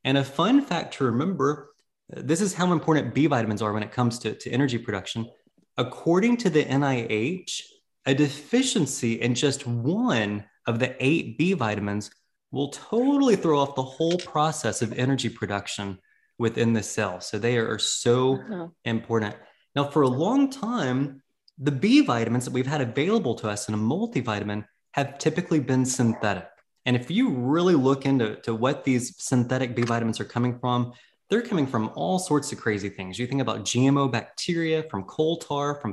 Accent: American